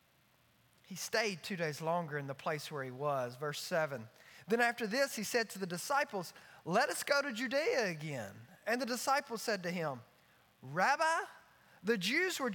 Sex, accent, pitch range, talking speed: male, American, 185-285 Hz, 175 wpm